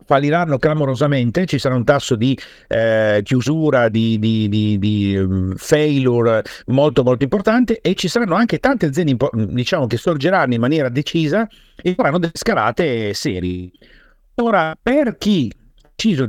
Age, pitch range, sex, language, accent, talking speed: 50-69, 120-160 Hz, male, Italian, native, 145 wpm